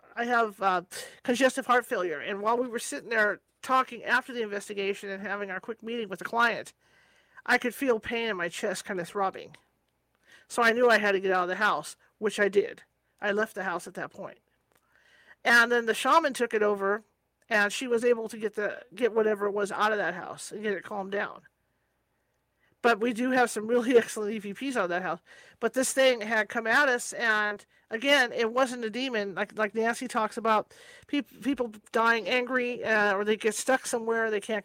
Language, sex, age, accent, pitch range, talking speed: English, male, 40-59, American, 205-245 Hz, 215 wpm